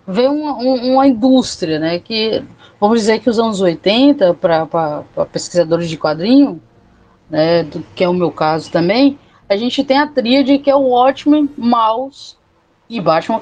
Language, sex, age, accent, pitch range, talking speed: Portuguese, female, 20-39, Brazilian, 185-275 Hz, 155 wpm